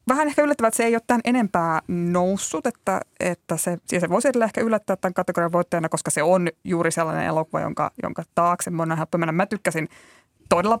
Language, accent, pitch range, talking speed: Finnish, native, 165-195 Hz, 195 wpm